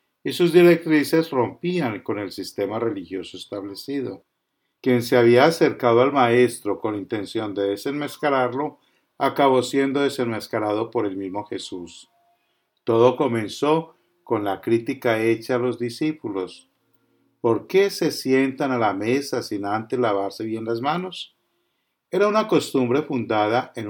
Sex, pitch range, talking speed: male, 115-150 Hz, 135 wpm